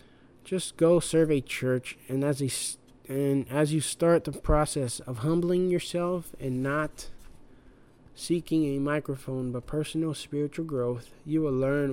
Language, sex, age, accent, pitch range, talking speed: English, male, 20-39, American, 125-150 Hz, 145 wpm